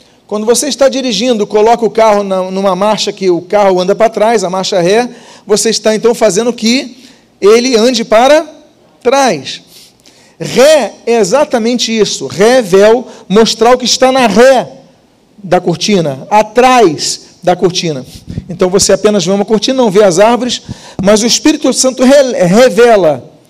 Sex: male